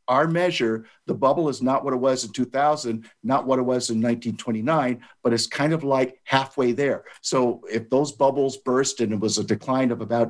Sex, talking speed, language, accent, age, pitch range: male, 210 wpm, English, American, 50-69, 115-135 Hz